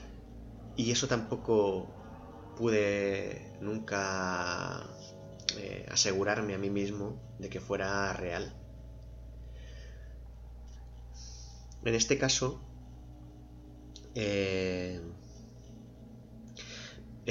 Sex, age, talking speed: male, 20-39, 60 wpm